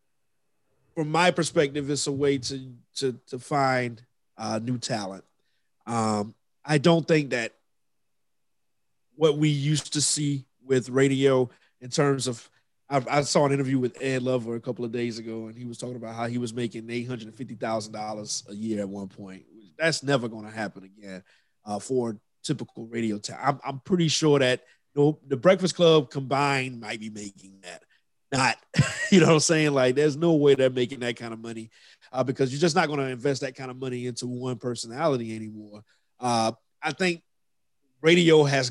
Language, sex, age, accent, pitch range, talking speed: English, male, 30-49, American, 120-150 Hz, 185 wpm